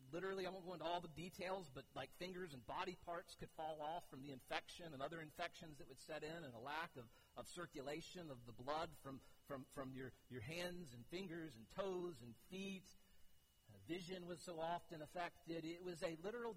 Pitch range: 145-185 Hz